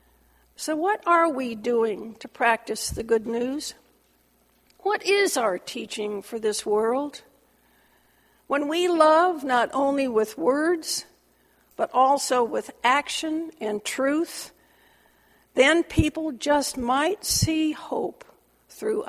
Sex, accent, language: female, American, English